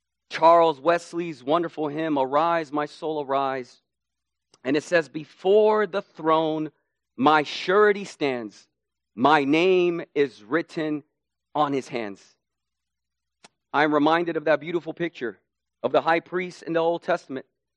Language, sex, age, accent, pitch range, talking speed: English, male, 40-59, American, 150-235 Hz, 130 wpm